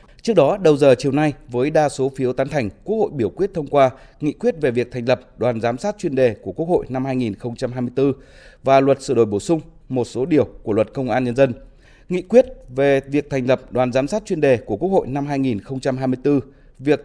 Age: 20-39